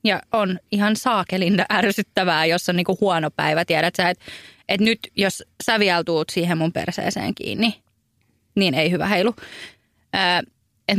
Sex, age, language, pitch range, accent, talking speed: female, 20-39, Finnish, 165-200 Hz, native, 155 wpm